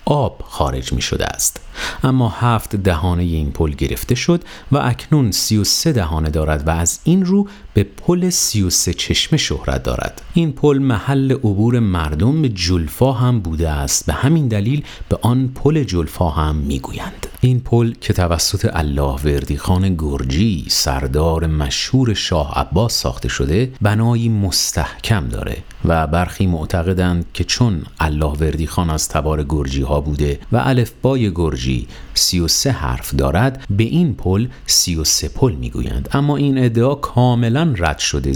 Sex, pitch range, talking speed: male, 80-120 Hz, 155 wpm